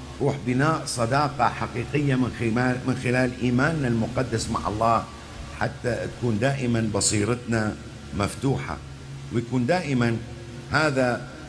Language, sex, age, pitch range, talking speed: English, male, 50-69, 105-135 Hz, 95 wpm